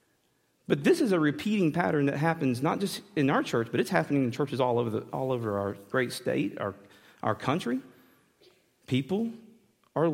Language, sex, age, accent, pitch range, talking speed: English, male, 40-59, American, 130-200 Hz, 185 wpm